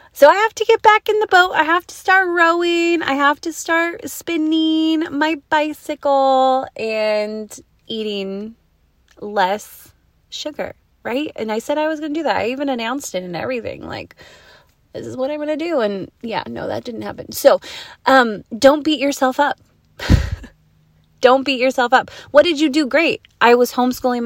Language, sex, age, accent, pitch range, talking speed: English, female, 20-39, American, 200-280 Hz, 180 wpm